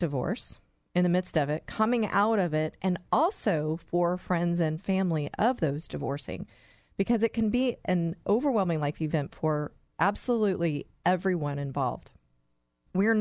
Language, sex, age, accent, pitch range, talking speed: English, female, 40-59, American, 155-210 Hz, 145 wpm